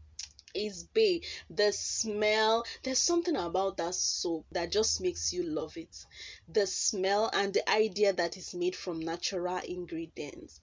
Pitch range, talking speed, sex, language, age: 175-245 Hz, 145 wpm, female, English, 20-39